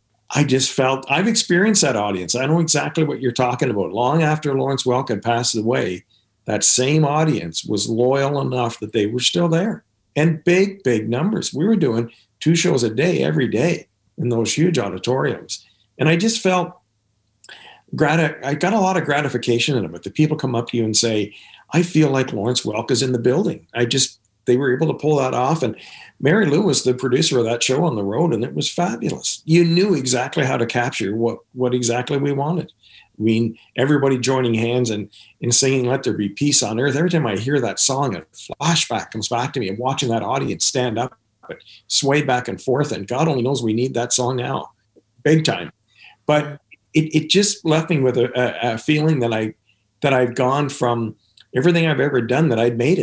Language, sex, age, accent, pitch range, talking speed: English, male, 50-69, American, 115-155 Hz, 210 wpm